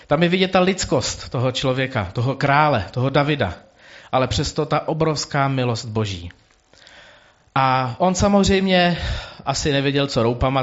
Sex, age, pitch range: male, 40-59, 110-140 Hz